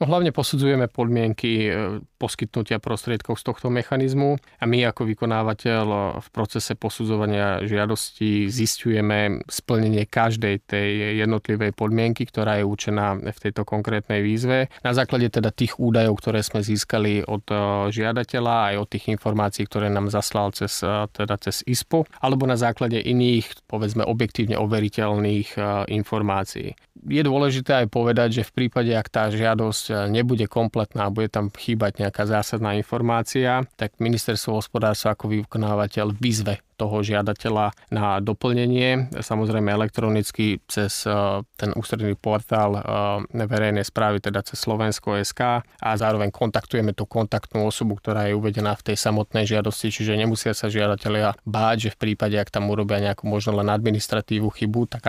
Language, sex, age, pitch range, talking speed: Slovak, male, 30-49, 105-115 Hz, 140 wpm